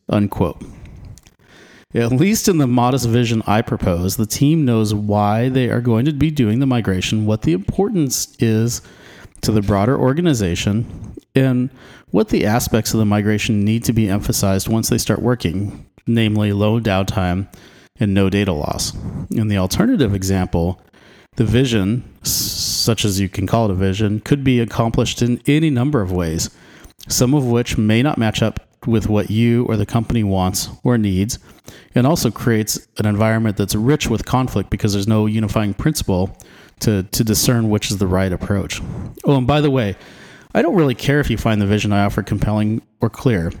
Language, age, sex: English, 30-49, male